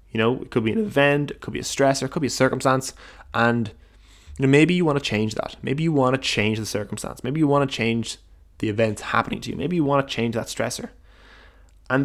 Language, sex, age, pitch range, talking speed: English, male, 10-29, 100-135 Hz, 255 wpm